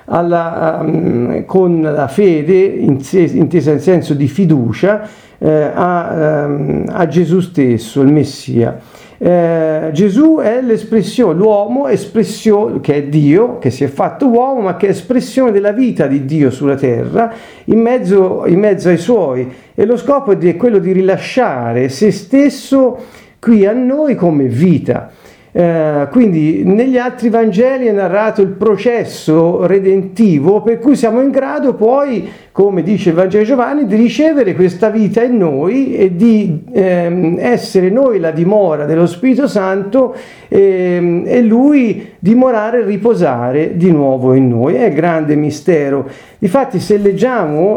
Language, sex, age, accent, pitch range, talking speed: Italian, male, 50-69, native, 155-225 Hz, 150 wpm